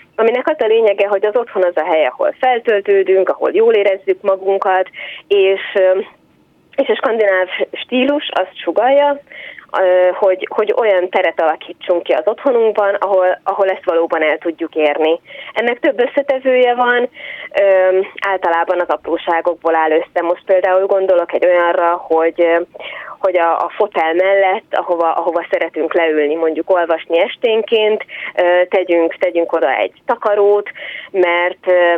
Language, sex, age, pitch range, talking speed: Hungarian, female, 20-39, 170-220 Hz, 135 wpm